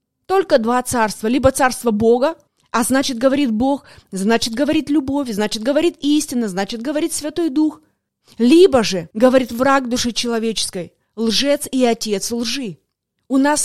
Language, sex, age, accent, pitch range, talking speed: Russian, female, 20-39, native, 230-300 Hz, 140 wpm